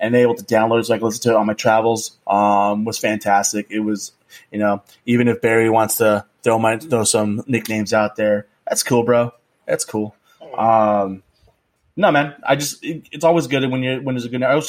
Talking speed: 215 wpm